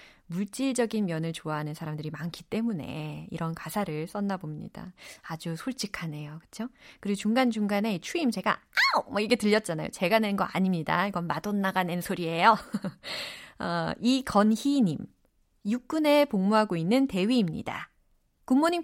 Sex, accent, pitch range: female, native, 170-245 Hz